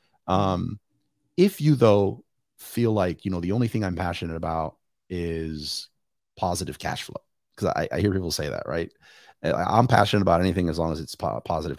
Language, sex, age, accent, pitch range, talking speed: English, male, 30-49, American, 85-115 Hz, 185 wpm